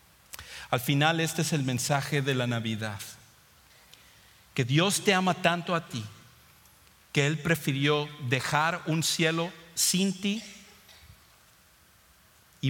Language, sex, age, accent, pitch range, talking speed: English, male, 50-69, Mexican, 115-145 Hz, 120 wpm